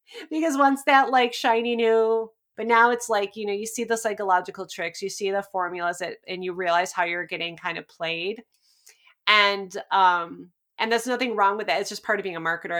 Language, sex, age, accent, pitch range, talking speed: English, female, 30-49, American, 180-215 Hz, 215 wpm